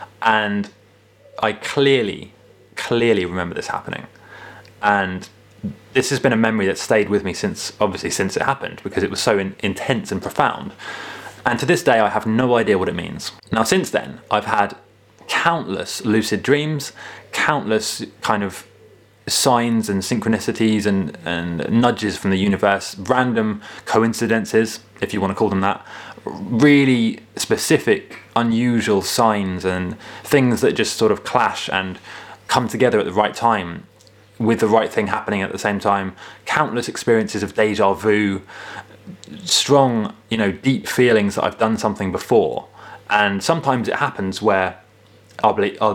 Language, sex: English, male